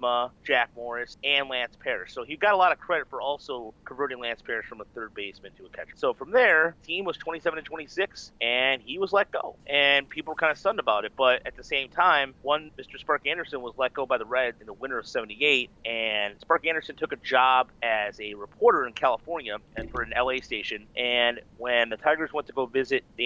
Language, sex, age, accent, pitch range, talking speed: English, male, 30-49, American, 115-145 Hz, 225 wpm